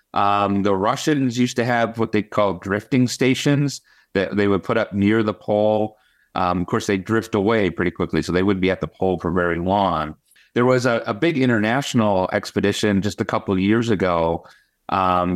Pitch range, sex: 85-110 Hz, male